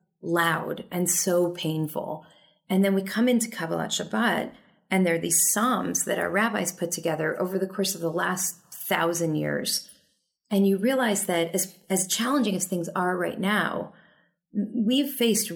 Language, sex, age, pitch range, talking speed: English, female, 30-49, 180-225 Hz, 165 wpm